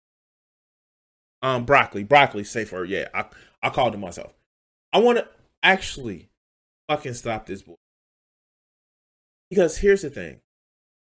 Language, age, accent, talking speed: English, 20-39, American, 120 wpm